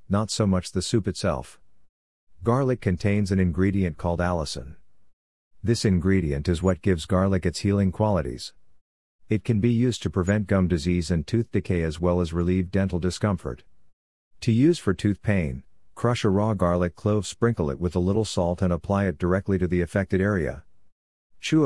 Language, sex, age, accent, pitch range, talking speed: English, male, 50-69, American, 85-100 Hz, 175 wpm